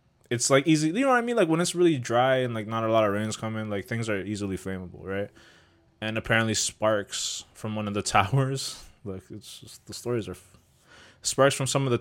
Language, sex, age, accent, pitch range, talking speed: English, male, 20-39, American, 95-115 Hz, 225 wpm